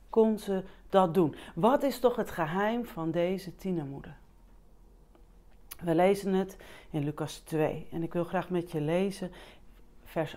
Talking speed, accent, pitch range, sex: 150 wpm, Dutch, 155-200 Hz, female